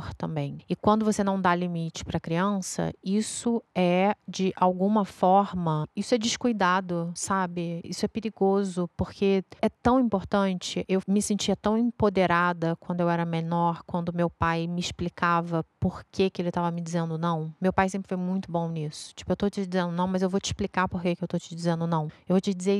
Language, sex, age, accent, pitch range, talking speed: Portuguese, female, 30-49, Brazilian, 175-200 Hz, 205 wpm